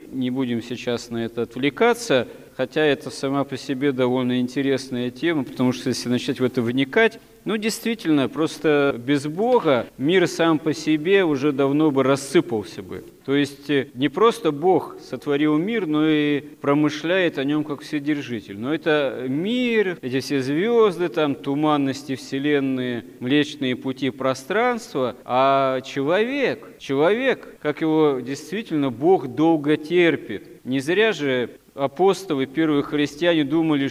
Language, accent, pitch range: Russian, native, 135-165 Hz